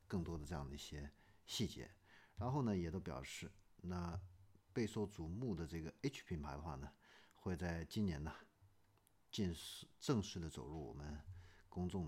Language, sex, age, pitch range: Chinese, male, 50-69, 80-105 Hz